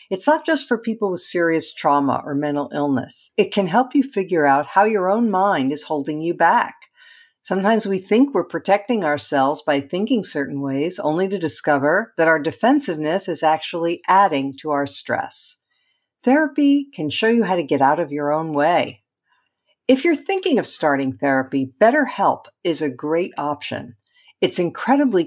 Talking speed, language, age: 170 wpm, English, 50-69